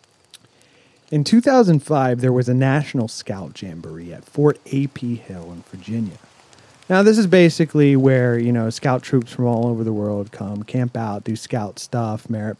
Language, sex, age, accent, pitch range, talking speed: English, male, 30-49, American, 115-165 Hz, 165 wpm